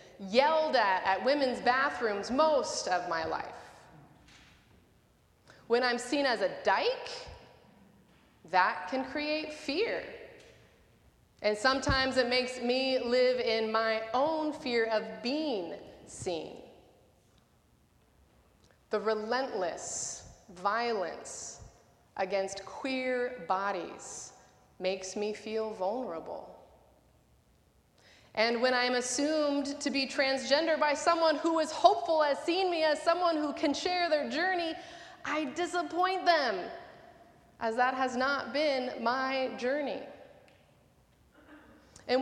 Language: English